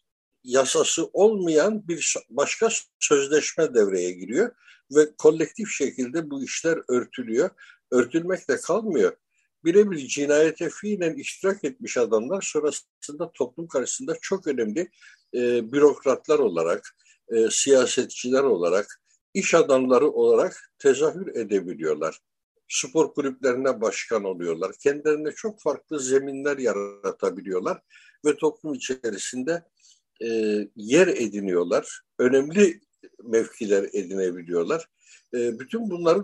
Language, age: Turkish, 60-79